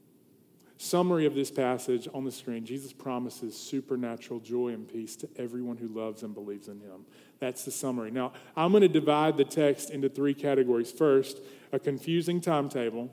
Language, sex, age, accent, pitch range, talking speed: English, male, 30-49, American, 130-180 Hz, 175 wpm